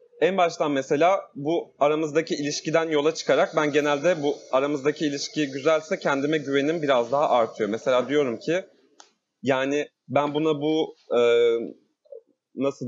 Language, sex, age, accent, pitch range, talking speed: Turkish, male, 30-49, native, 130-155 Hz, 125 wpm